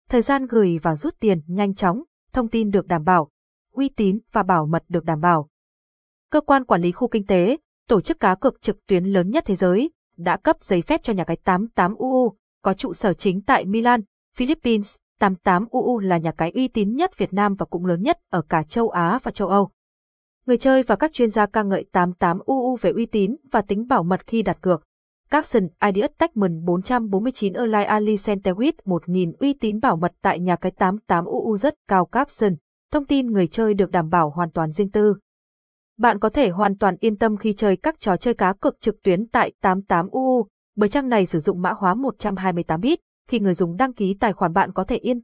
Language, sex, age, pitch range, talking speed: Vietnamese, female, 20-39, 185-245 Hz, 210 wpm